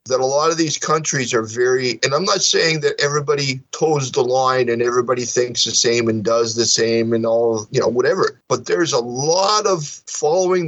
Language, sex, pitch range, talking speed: English, male, 120-155 Hz, 210 wpm